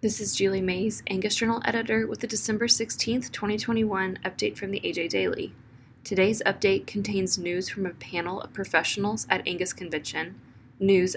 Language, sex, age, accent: English, female, 20-39, American